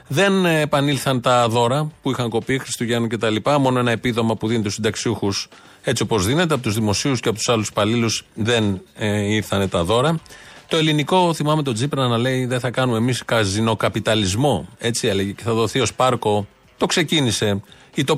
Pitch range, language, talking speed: 110-145 Hz, Greek, 180 wpm